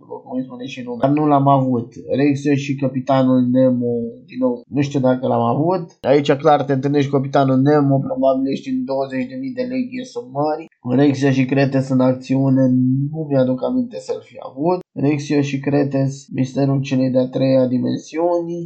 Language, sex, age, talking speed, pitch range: Romanian, male, 20-39, 160 wpm, 130-160 Hz